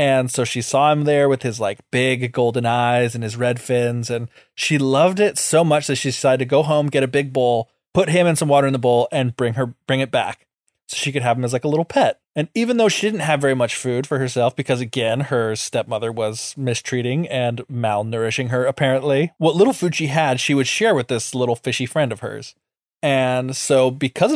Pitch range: 125-150 Hz